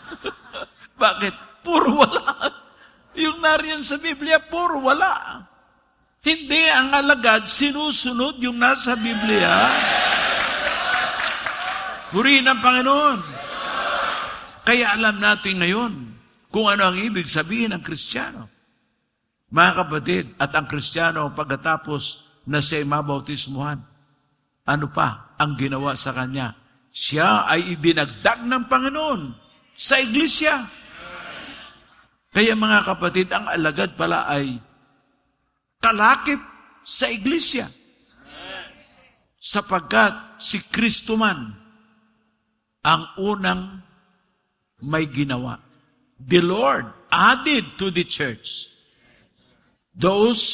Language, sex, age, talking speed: English, male, 50-69, 90 wpm